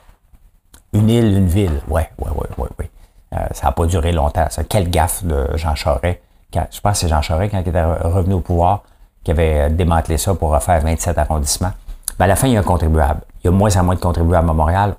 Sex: male